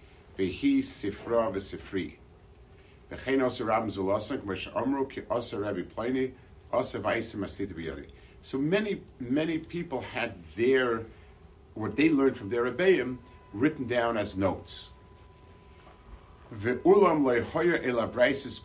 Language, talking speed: English, 50 wpm